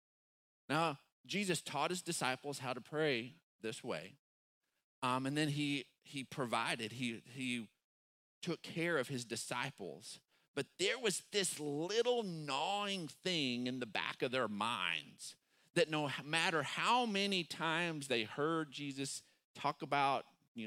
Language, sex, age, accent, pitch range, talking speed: English, male, 40-59, American, 120-155 Hz, 140 wpm